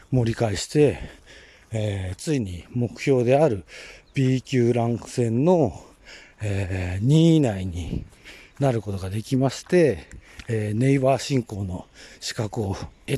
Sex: male